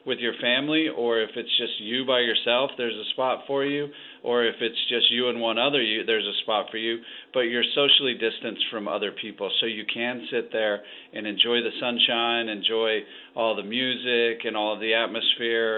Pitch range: 105-120 Hz